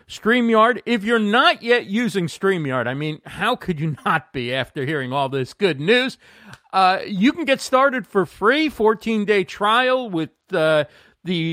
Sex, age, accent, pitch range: male, 50-69, American, 150-205 Hz